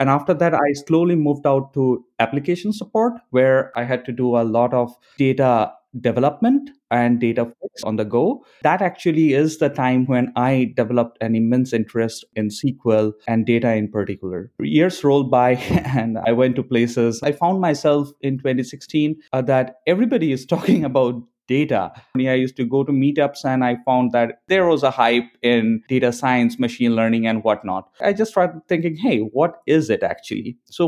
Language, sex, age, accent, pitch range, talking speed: English, male, 20-39, Indian, 120-155 Hz, 185 wpm